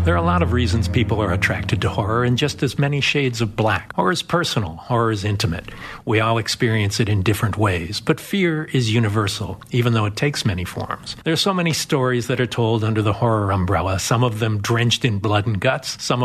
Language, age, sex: English, 50-69, male